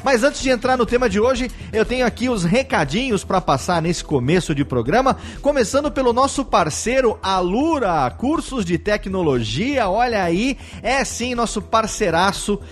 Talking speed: 155 wpm